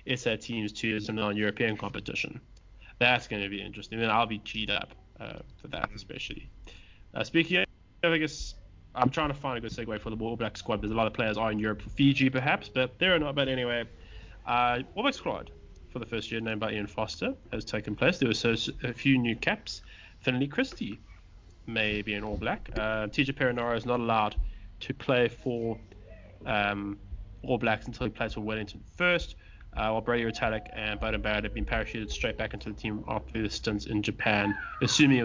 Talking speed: 215 wpm